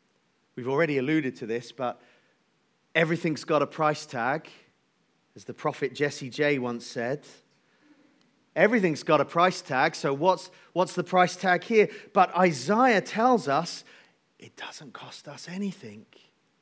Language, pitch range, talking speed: English, 130-200 Hz, 140 wpm